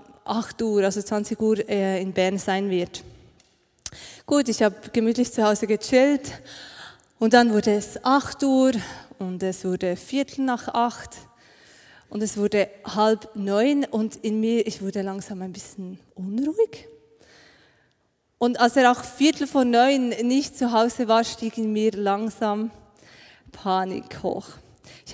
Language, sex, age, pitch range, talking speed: German, female, 20-39, 210-250 Hz, 145 wpm